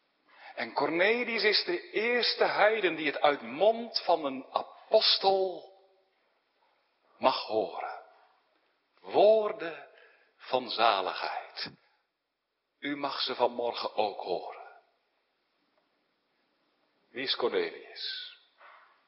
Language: Dutch